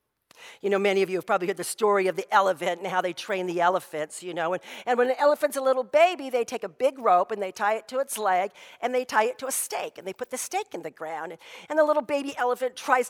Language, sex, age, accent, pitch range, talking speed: English, female, 50-69, American, 195-275 Hz, 290 wpm